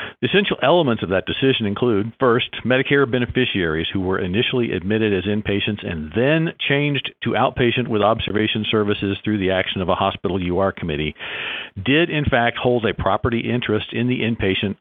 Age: 50-69